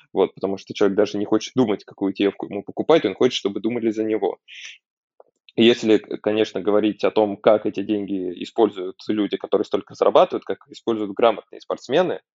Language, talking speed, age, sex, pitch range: Russian, 165 wpm, 20-39, male, 100-110 Hz